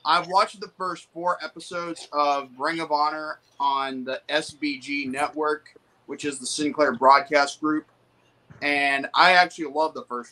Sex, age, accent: male, 20-39, American